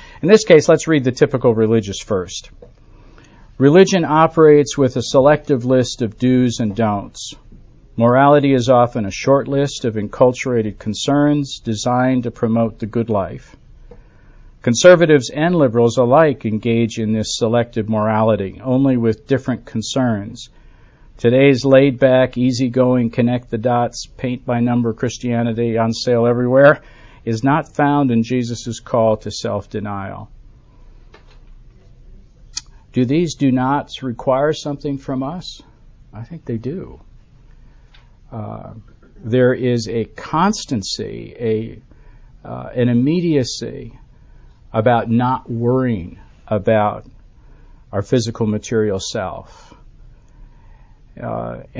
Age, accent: 50-69, American